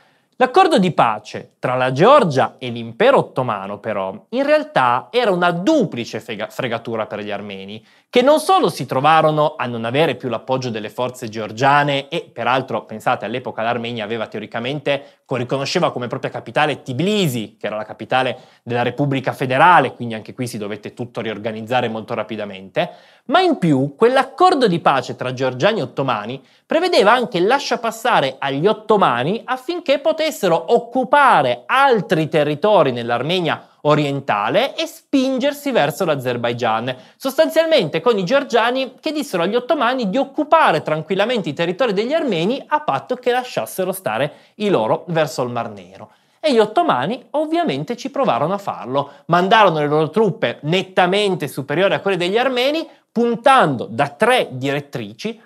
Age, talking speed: 20-39, 150 wpm